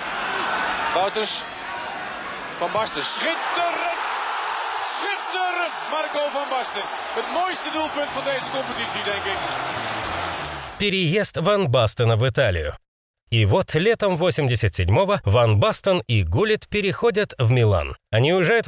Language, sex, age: Russian, male, 30-49